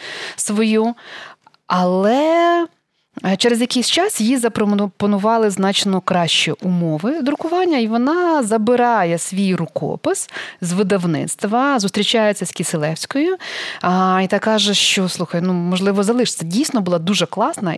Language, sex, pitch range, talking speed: Ukrainian, female, 170-215 Hz, 110 wpm